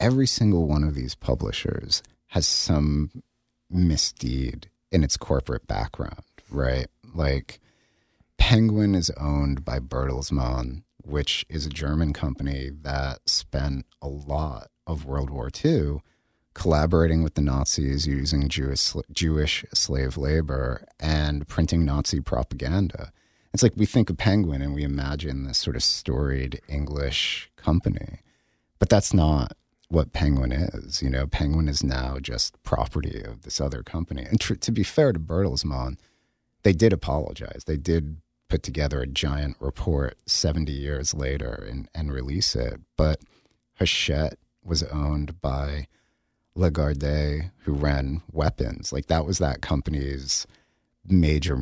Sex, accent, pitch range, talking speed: male, American, 70-85 Hz, 135 wpm